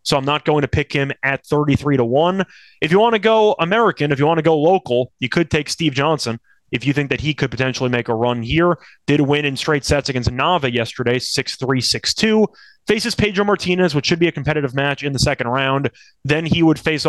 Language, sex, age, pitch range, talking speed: English, male, 20-39, 135-175 Hz, 240 wpm